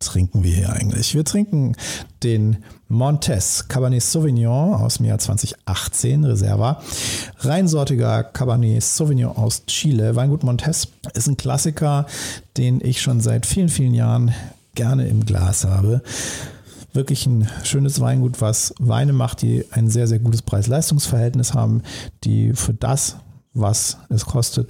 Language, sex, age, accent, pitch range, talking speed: German, male, 50-69, German, 100-125 Hz, 135 wpm